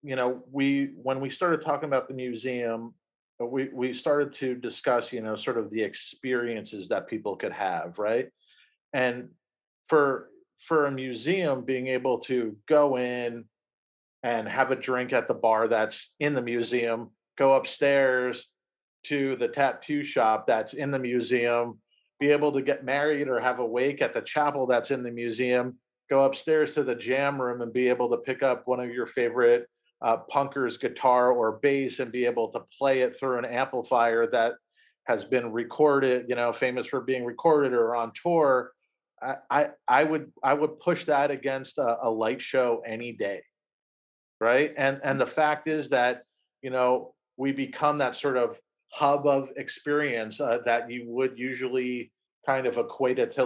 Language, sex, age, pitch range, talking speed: English, male, 40-59, 120-140 Hz, 175 wpm